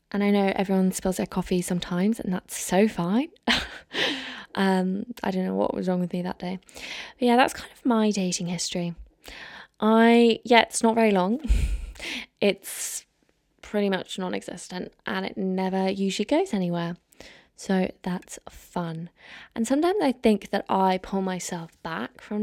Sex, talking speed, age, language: female, 160 wpm, 20-39, English